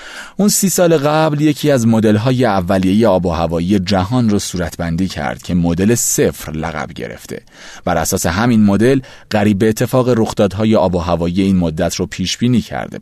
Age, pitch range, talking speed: 30-49, 85-120 Hz, 165 wpm